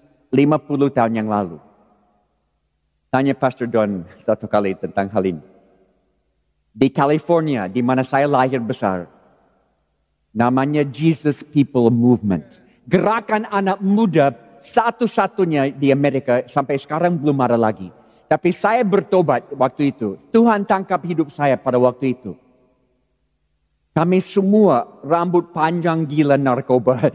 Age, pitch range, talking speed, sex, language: 50-69, 125-195 Hz, 115 wpm, male, Indonesian